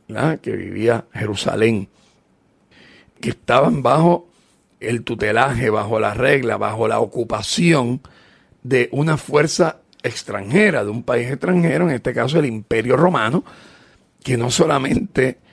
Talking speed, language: 120 wpm, Spanish